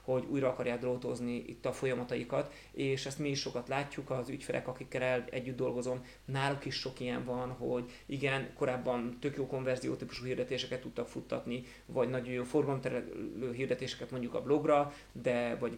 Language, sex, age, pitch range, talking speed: Hungarian, male, 30-49, 120-135 Hz, 165 wpm